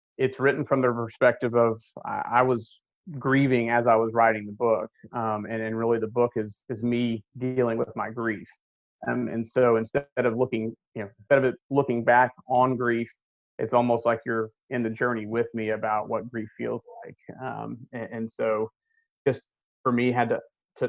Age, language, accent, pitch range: 30-49, English, American, 110-125 Hz